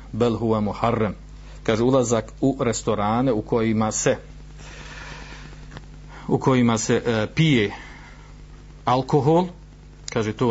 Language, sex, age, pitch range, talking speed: Croatian, male, 50-69, 115-150 Hz, 95 wpm